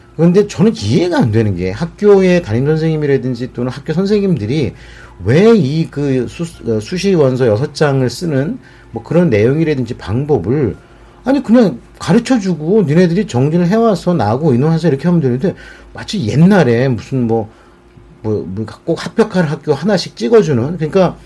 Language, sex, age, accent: English, male, 40-59, Korean